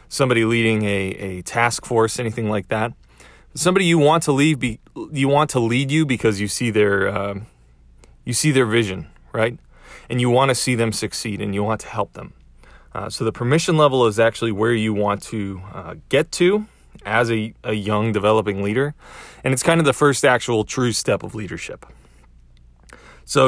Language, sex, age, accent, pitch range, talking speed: English, male, 20-39, American, 100-130 Hz, 190 wpm